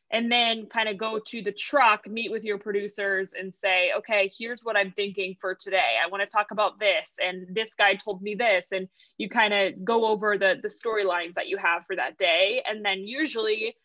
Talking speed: 220 wpm